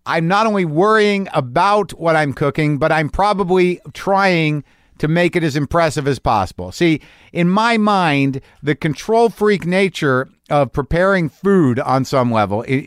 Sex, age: male, 50-69